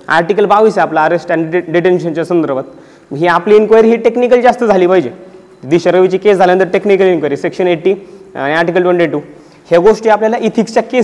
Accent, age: native, 30-49